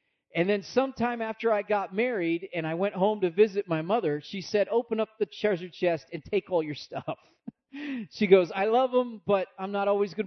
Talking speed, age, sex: 215 wpm, 40-59, male